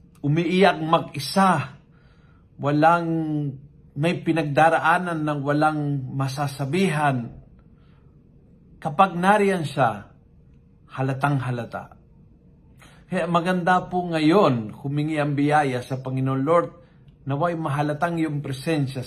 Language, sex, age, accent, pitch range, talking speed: Filipino, male, 50-69, native, 130-165 Hz, 80 wpm